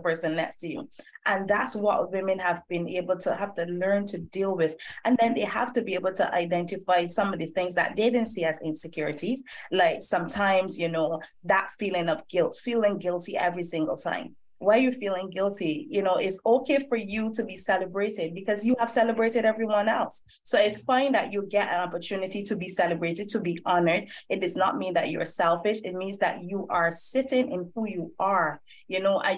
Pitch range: 175-230 Hz